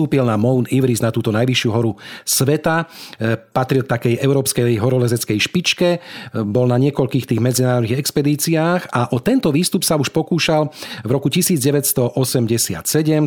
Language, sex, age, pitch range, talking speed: Slovak, male, 40-59, 120-145 Hz, 130 wpm